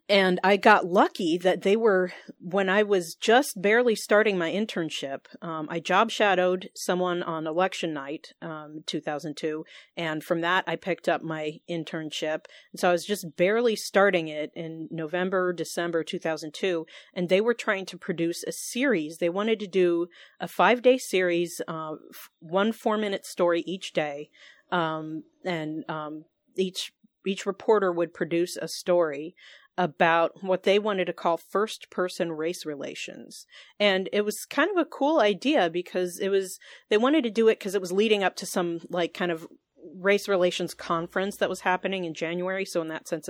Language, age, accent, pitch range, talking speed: English, 40-59, American, 165-205 Hz, 175 wpm